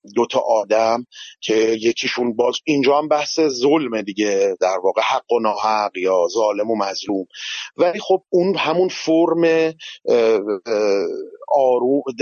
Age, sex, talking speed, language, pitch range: 30-49, male, 125 wpm, Persian, 115-155 Hz